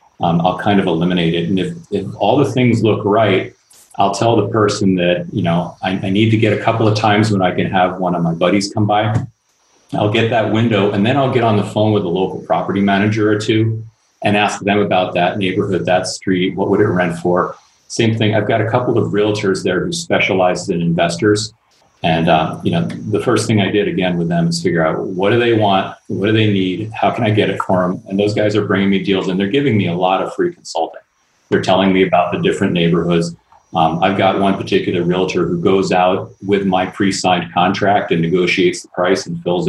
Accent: American